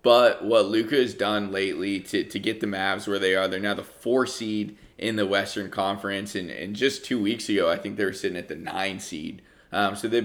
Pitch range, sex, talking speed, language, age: 95-105 Hz, male, 230 wpm, English, 20-39